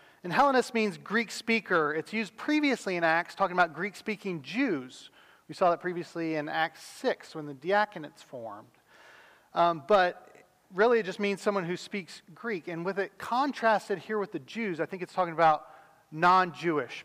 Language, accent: English, American